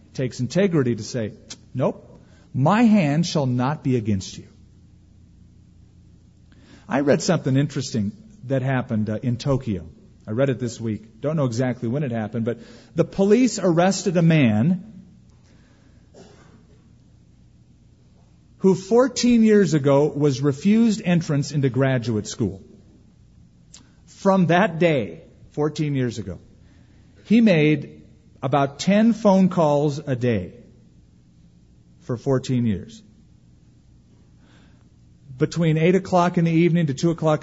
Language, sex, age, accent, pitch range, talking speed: English, male, 40-59, American, 110-165 Hz, 120 wpm